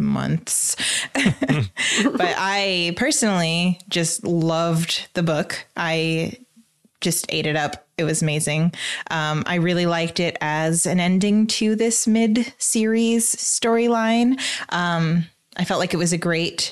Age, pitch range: 20-39, 160-205 Hz